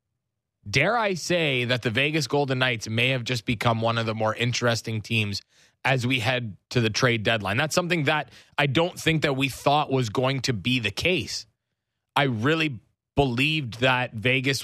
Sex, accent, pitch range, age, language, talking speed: male, American, 115-140 Hz, 20-39, English, 185 wpm